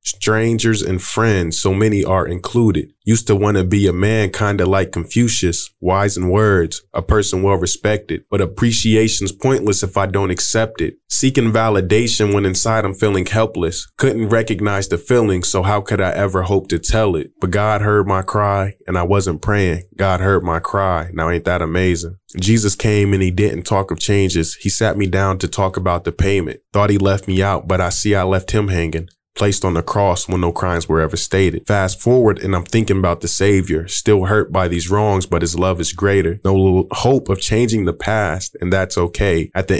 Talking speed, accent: 205 wpm, American